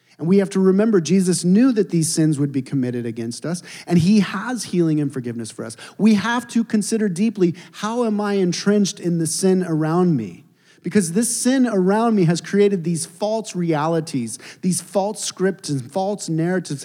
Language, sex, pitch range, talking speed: English, male, 140-190 Hz, 190 wpm